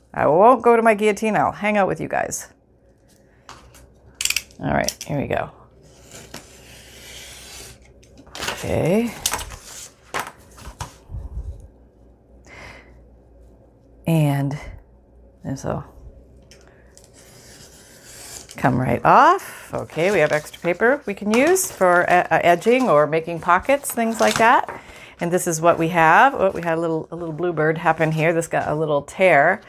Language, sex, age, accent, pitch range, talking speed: English, female, 40-59, American, 130-180 Hz, 125 wpm